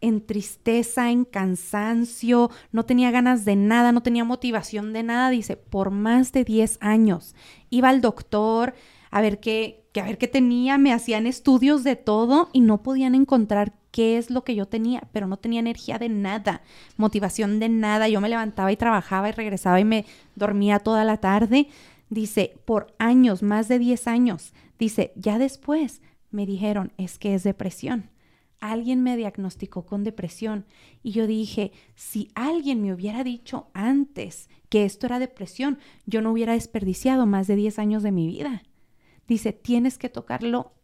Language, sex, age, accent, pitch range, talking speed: Spanish, female, 30-49, Mexican, 210-250 Hz, 170 wpm